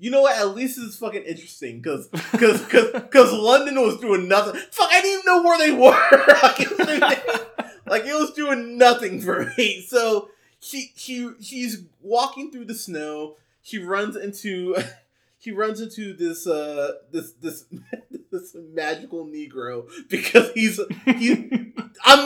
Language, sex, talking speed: English, male, 155 wpm